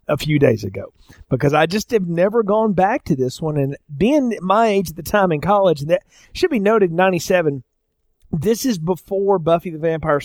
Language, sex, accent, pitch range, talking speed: English, male, American, 145-185 Hz, 205 wpm